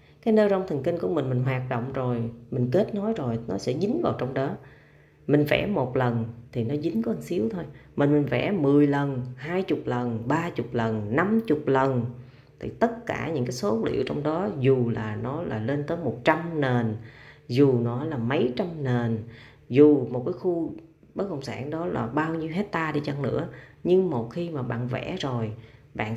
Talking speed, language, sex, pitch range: 205 wpm, Vietnamese, female, 120-160 Hz